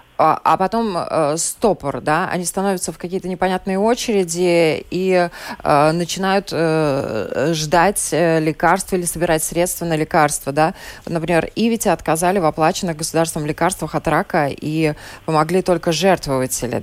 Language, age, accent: Russian, 20-39, native